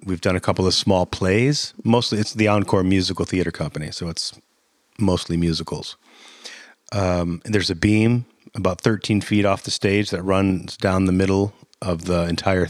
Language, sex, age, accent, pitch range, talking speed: English, male, 30-49, American, 90-105 Hz, 175 wpm